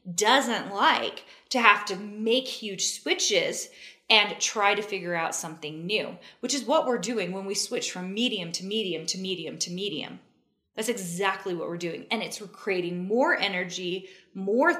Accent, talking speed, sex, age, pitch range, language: American, 170 wpm, female, 20-39, 175-225 Hz, English